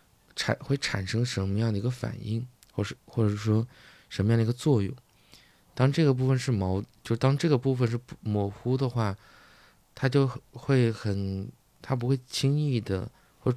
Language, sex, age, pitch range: Chinese, male, 20-39, 100-125 Hz